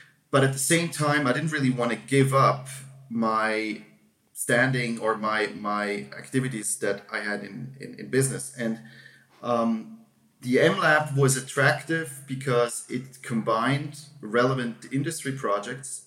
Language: English